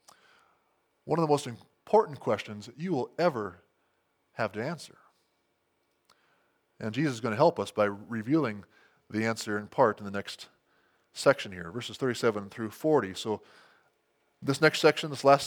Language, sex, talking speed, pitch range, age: English, male, 155 wpm, 130-175 Hz, 20-39